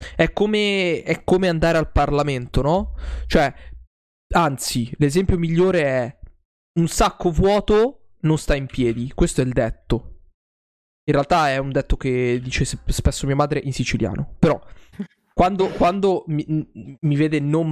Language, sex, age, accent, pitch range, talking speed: Italian, male, 20-39, native, 130-170 Hz, 140 wpm